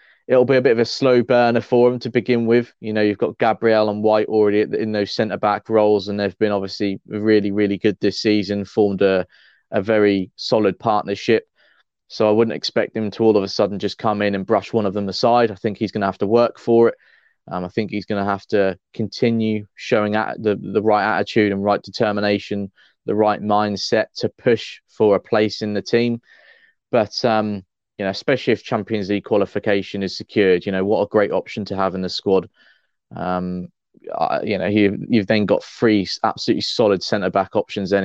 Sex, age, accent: male, 20-39, British